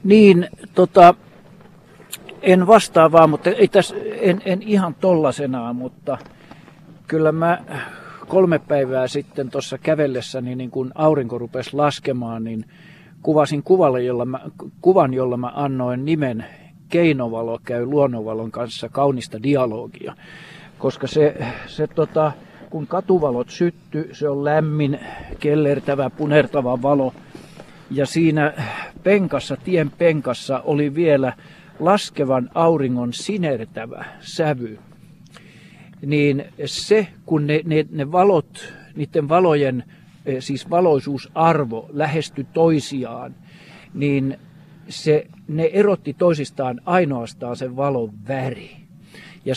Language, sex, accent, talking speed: Finnish, male, native, 105 wpm